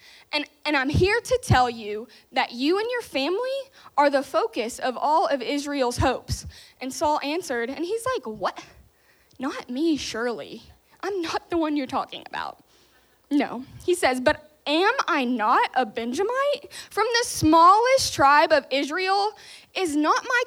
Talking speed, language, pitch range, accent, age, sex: 160 wpm, English, 265-370 Hz, American, 10-29, female